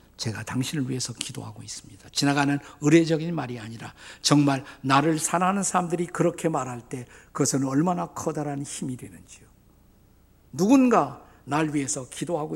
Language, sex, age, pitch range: Korean, male, 50-69, 115-175 Hz